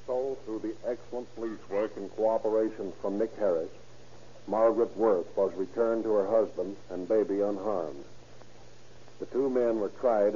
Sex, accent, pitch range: male, American, 110-130 Hz